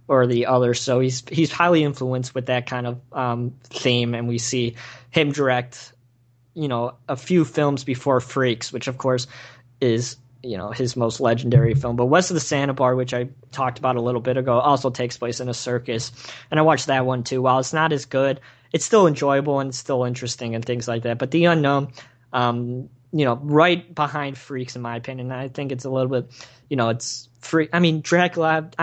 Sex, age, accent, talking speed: male, 20-39, American, 215 wpm